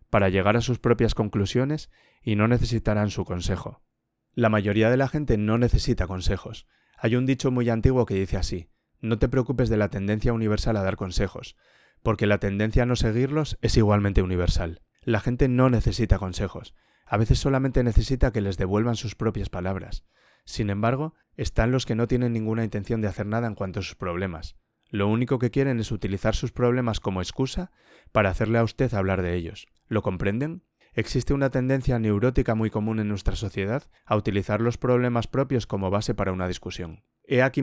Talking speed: 190 wpm